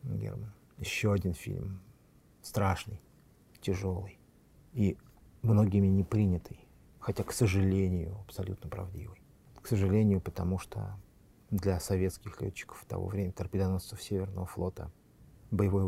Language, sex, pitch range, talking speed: Russian, male, 90-105 Hz, 105 wpm